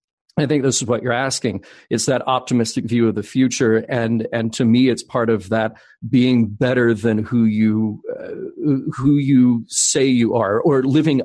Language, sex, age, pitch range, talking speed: English, male, 40-59, 110-130 Hz, 185 wpm